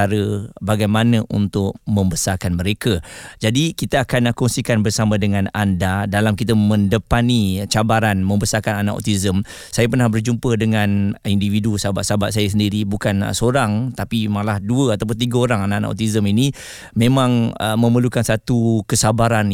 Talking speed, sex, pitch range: 130 wpm, male, 105-130 Hz